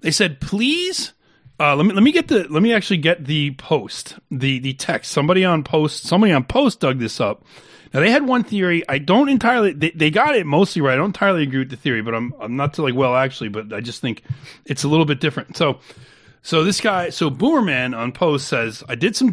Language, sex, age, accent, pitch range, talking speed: English, male, 30-49, American, 150-220 Hz, 245 wpm